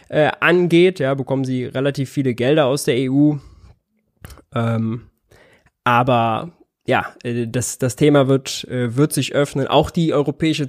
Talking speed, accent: 130 wpm, German